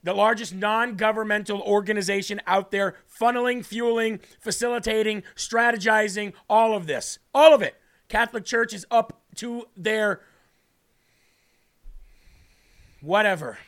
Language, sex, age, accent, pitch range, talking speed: English, male, 40-59, American, 205-235 Hz, 100 wpm